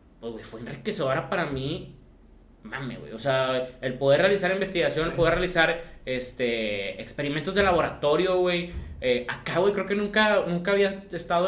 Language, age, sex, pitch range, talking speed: Spanish, 20-39, male, 130-185 Hz, 155 wpm